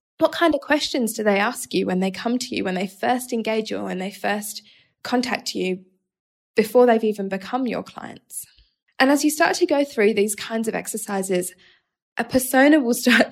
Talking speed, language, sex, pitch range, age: 205 wpm, English, female, 200-260 Hz, 10-29